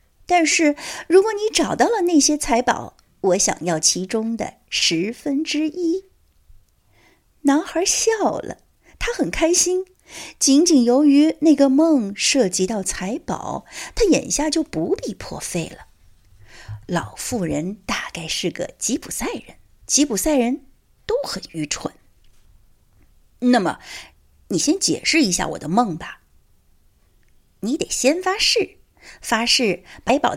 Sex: female